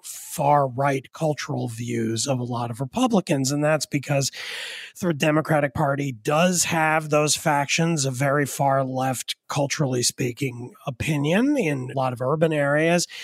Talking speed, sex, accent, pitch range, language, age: 135 wpm, male, American, 140-175 Hz, English, 30-49